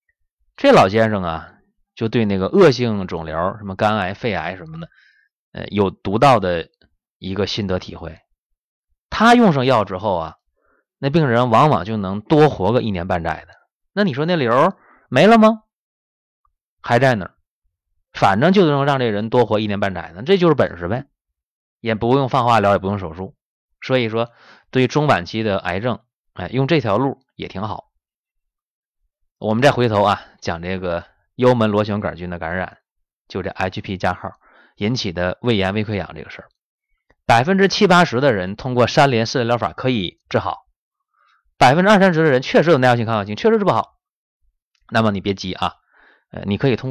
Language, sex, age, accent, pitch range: Chinese, male, 20-39, native, 95-130 Hz